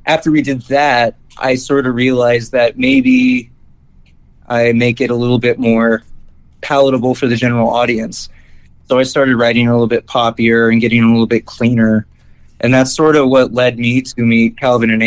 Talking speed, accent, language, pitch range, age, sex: 185 wpm, American, English, 110-125 Hz, 20-39, male